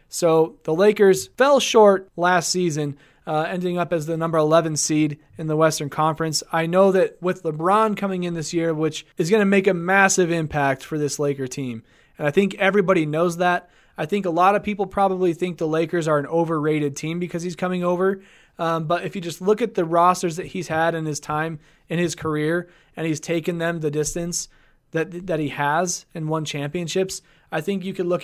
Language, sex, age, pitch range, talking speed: English, male, 20-39, 155-180 Hz, 215 wpm